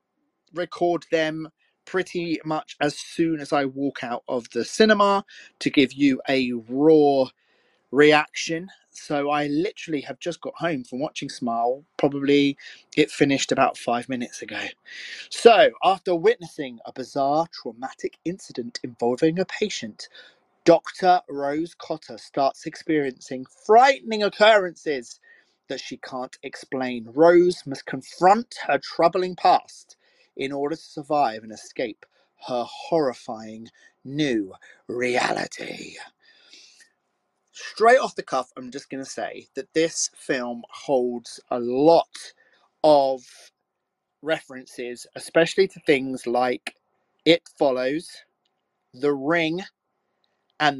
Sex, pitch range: male, 130-175 Hz